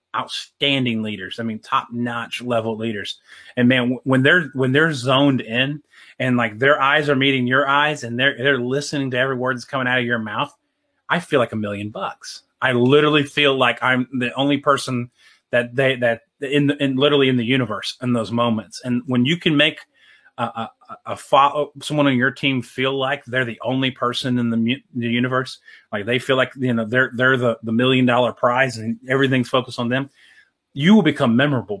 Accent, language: American, English